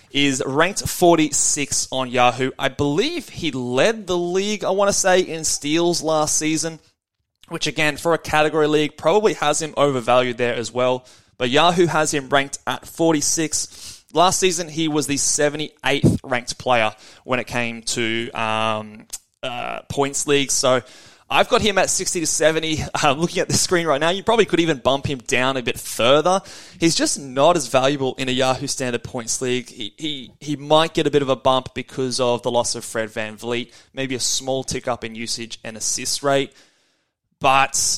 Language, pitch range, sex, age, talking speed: English, 115-150 Hz, male, 20-39, 190 wpm